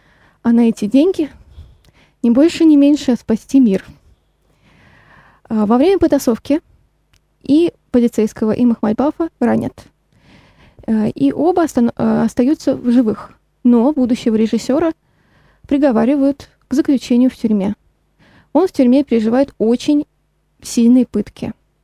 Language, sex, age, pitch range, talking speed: Russian, female, 20-39, 230-280 Hz, 105 wpm